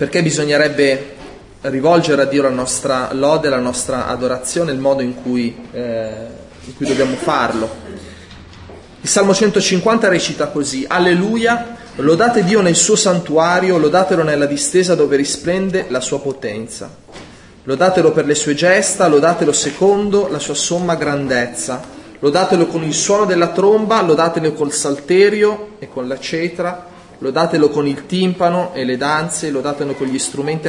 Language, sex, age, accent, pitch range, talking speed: Italian, male, 30-49, native, 135-180 Hz, 140 wpm